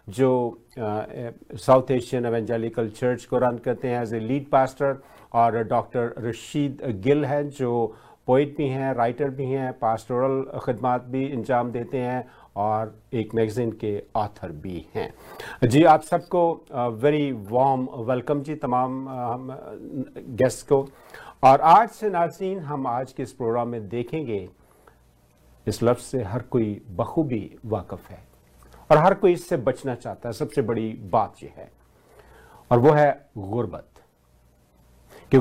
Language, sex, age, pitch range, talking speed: Hindi, male, 50-69, 115-140 Hz, 140 wpm